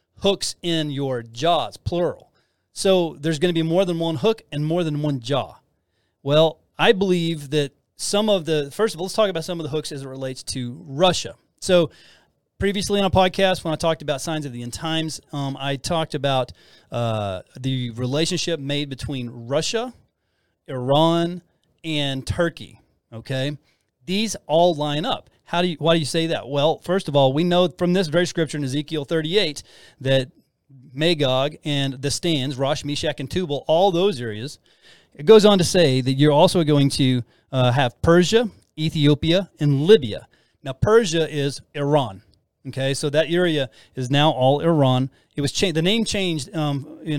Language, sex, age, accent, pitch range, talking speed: English, male, 30-49, American, 135-170 Hz, 180 wpm